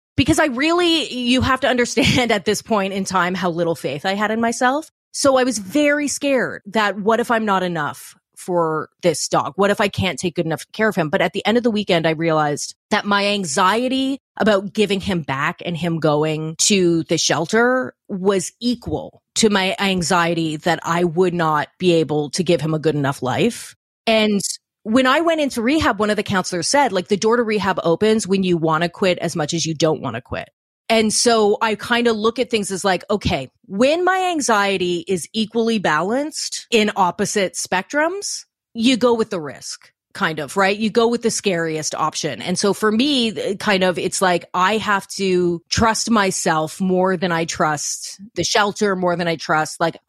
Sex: female